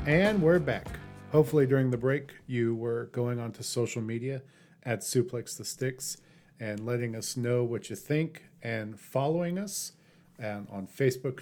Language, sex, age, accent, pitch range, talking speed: English, male, 40-59, American, 110-145 Hz, 165 wpm